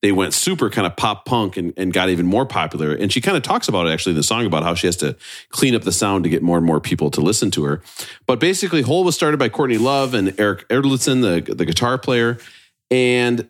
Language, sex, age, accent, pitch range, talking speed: English, male, 40-59, American, 85-120 Hz, 260 wpm